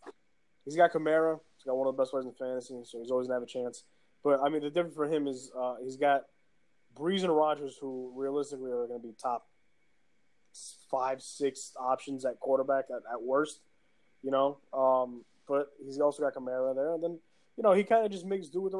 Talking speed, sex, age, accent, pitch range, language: 225 wpm, male, 20-39, American, 125-155 Hz, English